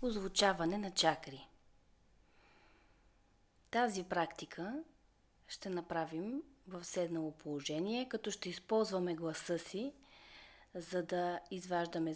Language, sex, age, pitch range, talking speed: Bulgarian, female, 20-39, 165-210 Hz, 90 wpm